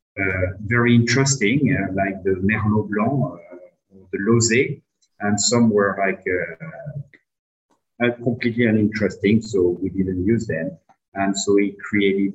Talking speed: 140 wpm